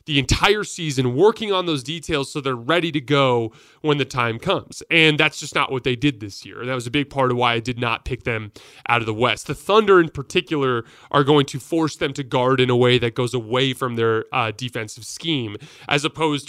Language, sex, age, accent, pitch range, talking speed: English, male, 20-39, American, 120-155 Hz, 235 wpm